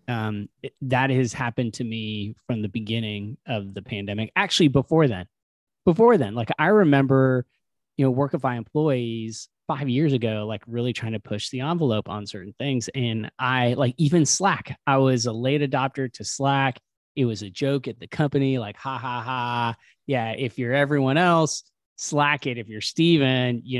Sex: male